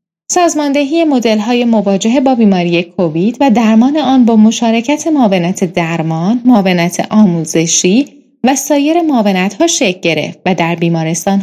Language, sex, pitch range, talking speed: Persian, female, 200-265 Hz, 125 wpm